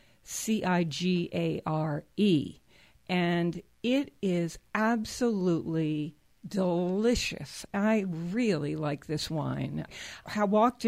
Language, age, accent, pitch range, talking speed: English, 60-79, American, 160-215 Hz, 70 wpm